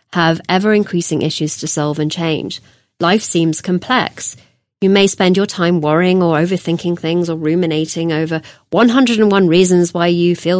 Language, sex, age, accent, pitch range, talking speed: English, female, 30-49, British, 155-200 Hz, 155 wpm